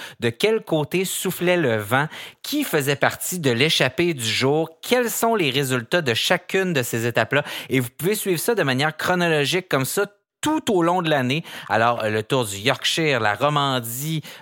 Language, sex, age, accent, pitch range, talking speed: French, male, 30-49, Canadian, 120-160 Hz, 185 wpm